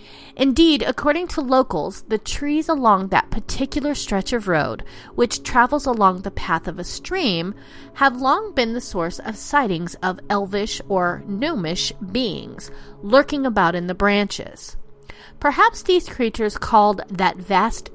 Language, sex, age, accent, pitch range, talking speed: English, female, 30-49, American, 190-270 Hz, 145 wpm